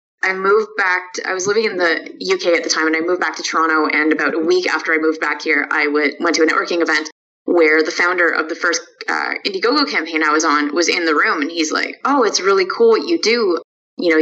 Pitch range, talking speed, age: 160-230 Hz, 260 wpm, 20-39